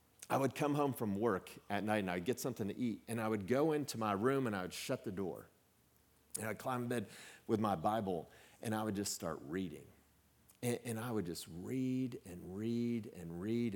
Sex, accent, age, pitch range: male, American, 40-59, 95-130 Hz